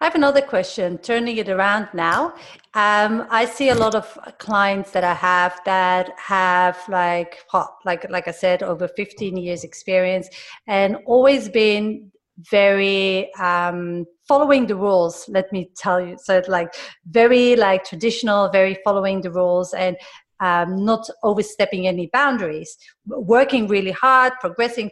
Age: 40-59